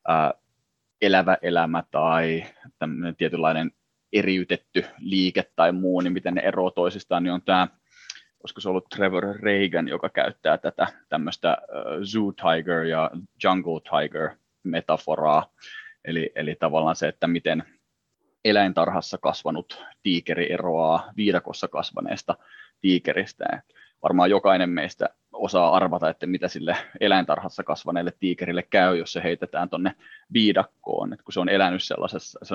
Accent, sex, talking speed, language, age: native, male, 125 wpm, Finnish, 20-39